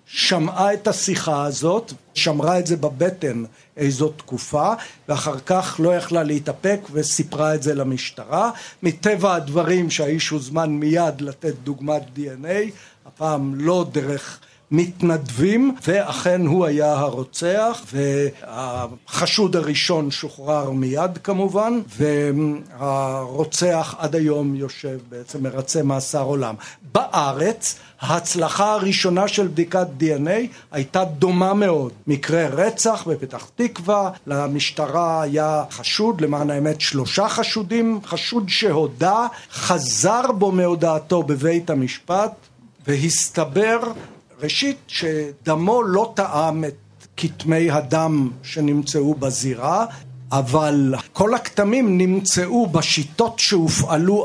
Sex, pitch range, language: male, 145-185 Hz, Hebrew